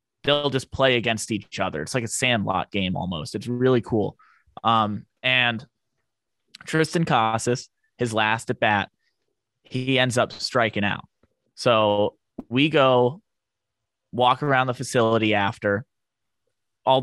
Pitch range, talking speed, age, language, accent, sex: 105-125 Hz, 130 wpm, 20-39, English, American, male